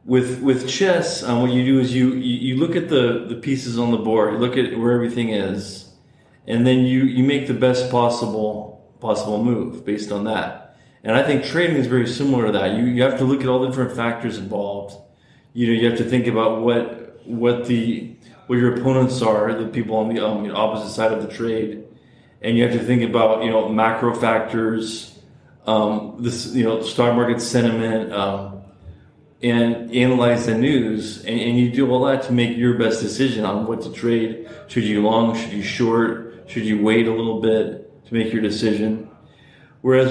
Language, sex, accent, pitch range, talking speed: English, male, American, 110-125 Hz, 205 wpm